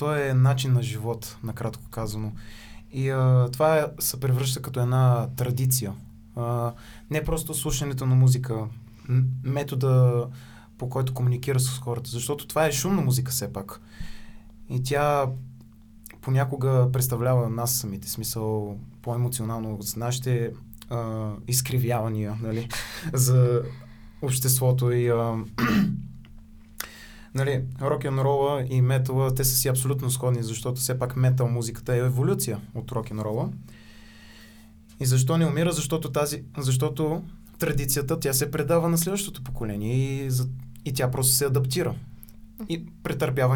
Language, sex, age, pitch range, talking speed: Bulgarian, male, 20-39, 115-135 Hz, 130 wpm